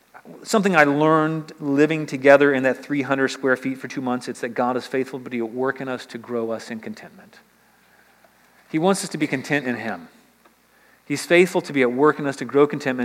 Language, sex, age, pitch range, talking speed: English, male, 40-59, 125-150 Hz, 220 wpm